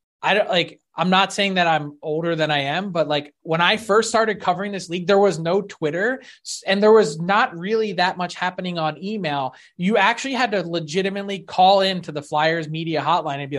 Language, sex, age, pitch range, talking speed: English, male, 20-39, 160-220 Hz, 210 wpm